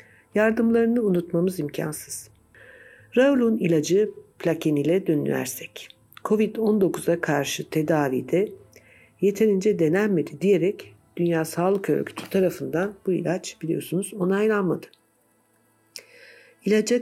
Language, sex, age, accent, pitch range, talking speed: Turkish, female, 60-79, native, 155-215 Hz, 80 wpm